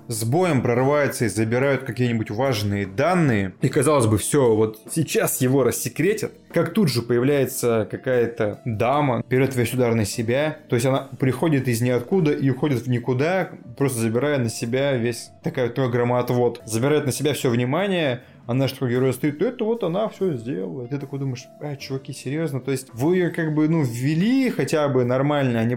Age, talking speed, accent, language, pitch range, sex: 20-39, 185 wpm, native, Russian, 120-150 Hz, male